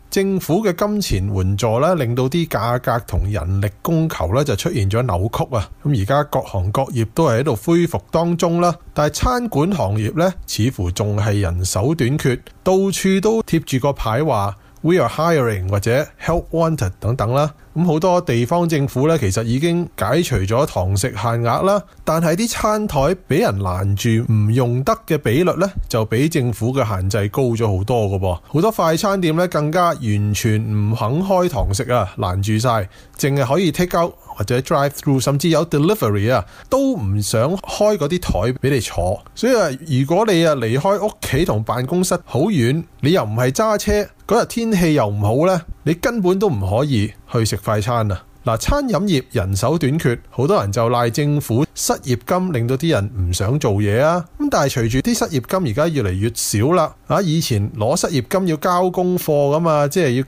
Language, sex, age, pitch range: Chinese, male, 20-39, 110-165 Hz